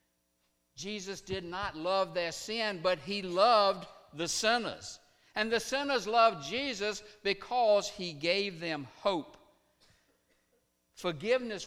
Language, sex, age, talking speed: English, male, 60-79, 115 wpm